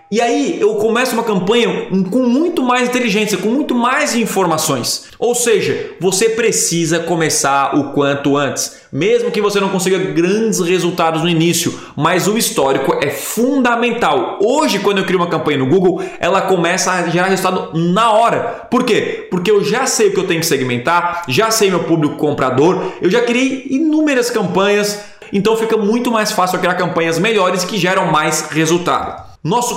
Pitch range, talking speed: 165-225 Hz, 175 wpm